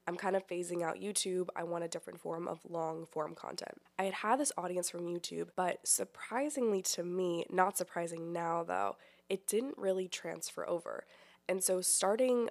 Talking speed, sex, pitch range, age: 180 wpm, female, 165-185 Hz, 20-39